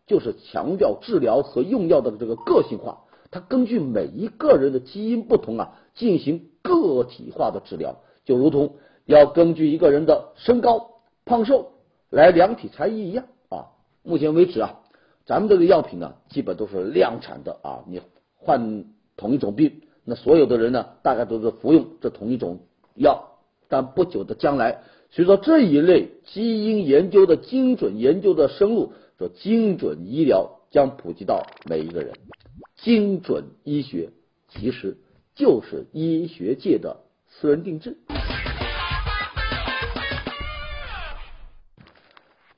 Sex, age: male, 50-69